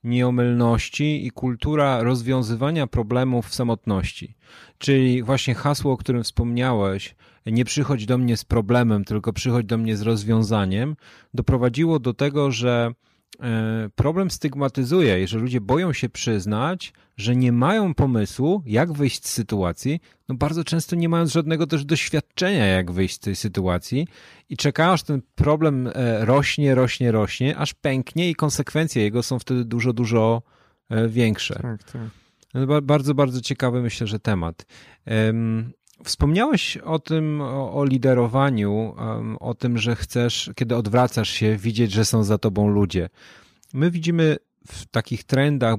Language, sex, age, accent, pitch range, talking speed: Polish, male, 30-49, native, 110-135 Hz, 140 wpm